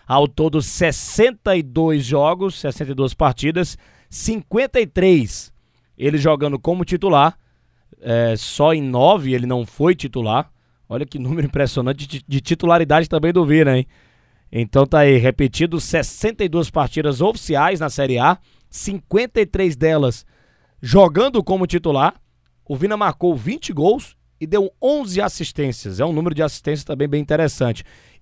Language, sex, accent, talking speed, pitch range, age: Portuguese, male, Brazilian, 130 wpm, 135-185 Hz, 20-39